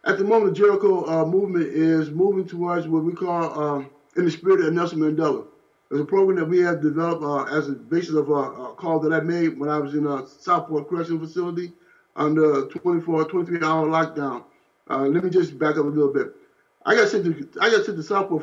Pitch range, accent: 150-175 Hz, American